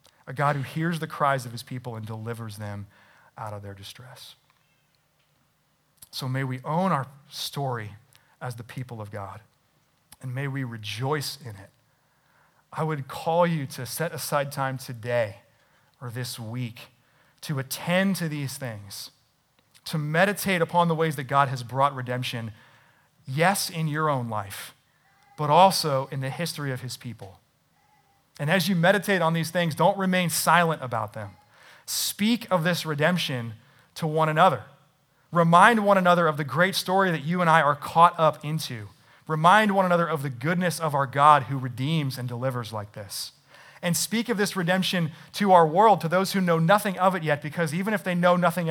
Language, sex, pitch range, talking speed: English, male, 125-165 Hz, 175 wpm